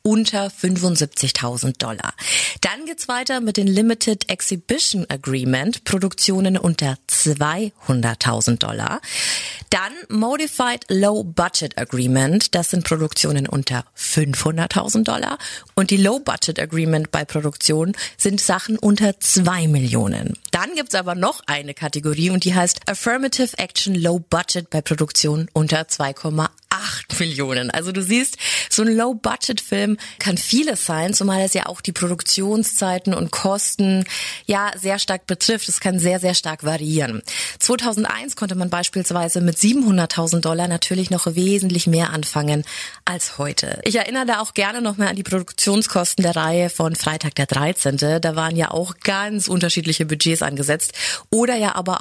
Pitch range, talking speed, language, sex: 155-205 Hz, 145 wpm, German, female